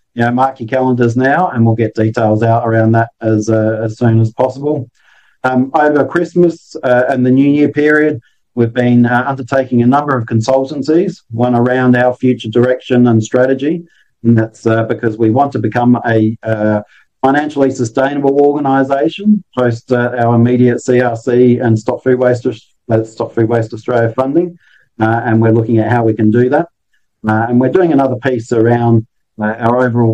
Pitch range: 115-135 Hz